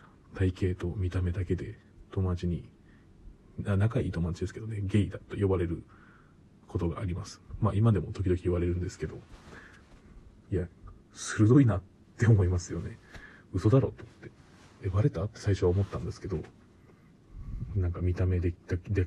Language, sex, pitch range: Japanese, male, 90-105 Hz